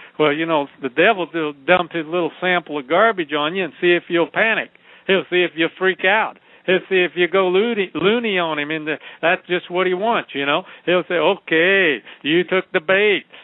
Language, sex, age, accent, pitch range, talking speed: English, male, 60-79, American, 165-190 Hz, 220 wpm